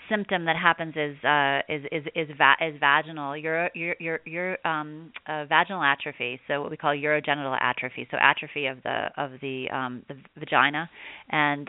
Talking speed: 170 wpm